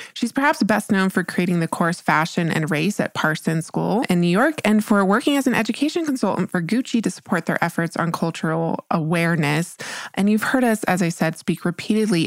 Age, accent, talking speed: 20-39, American, 205 wpm